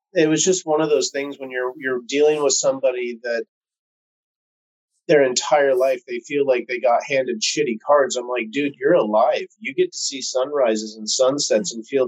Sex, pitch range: male, 120-170 Hz